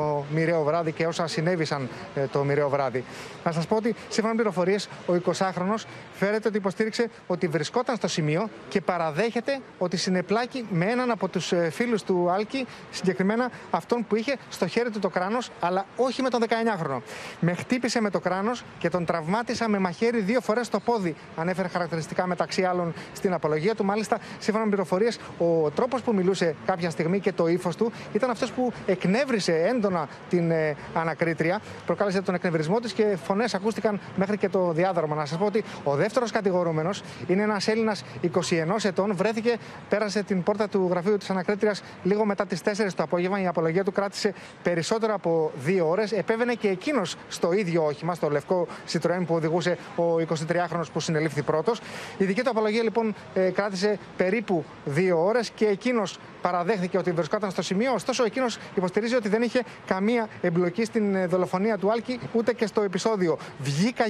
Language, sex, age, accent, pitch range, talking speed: Greek, male, 30-49, native, 175-220 Hz, 170 wpm